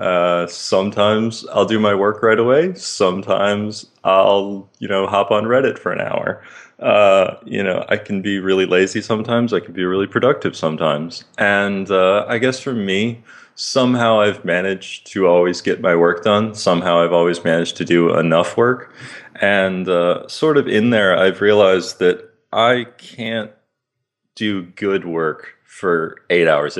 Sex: male